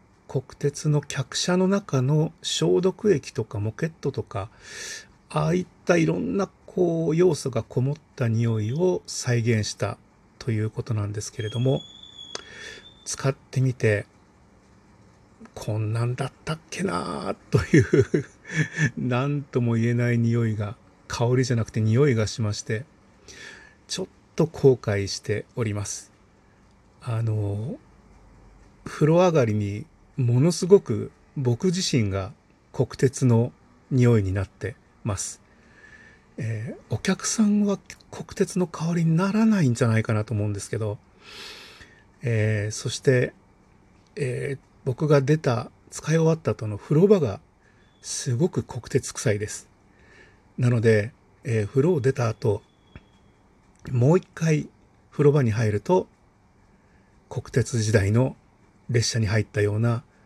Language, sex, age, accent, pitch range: Japanese, male, 40-59, native, 105-150 Hz